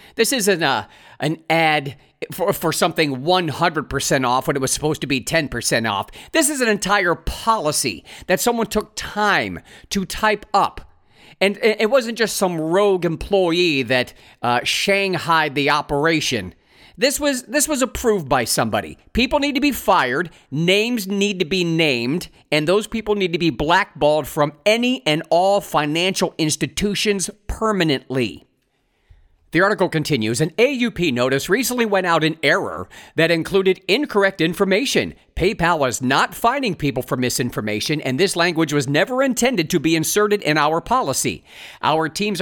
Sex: male